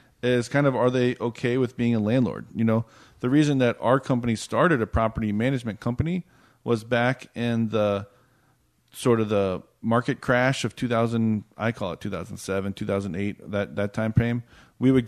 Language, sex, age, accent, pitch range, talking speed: English, male, 40-59, American, 110-155 Hz, 175 wpm